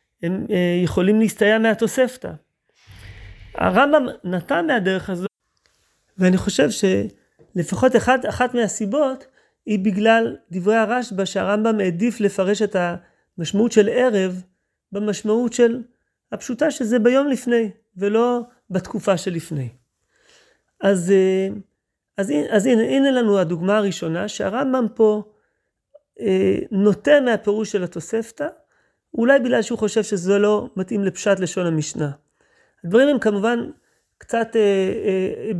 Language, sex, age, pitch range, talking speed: Hebrew, male, 30-49, 185-235 Hz, 115 wpm